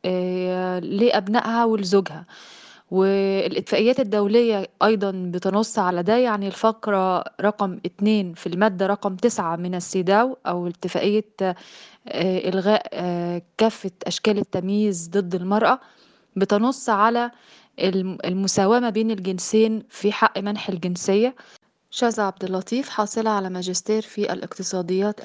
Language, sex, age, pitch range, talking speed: Arabic, female, 20-39, 190-230 Hz, 100 wpm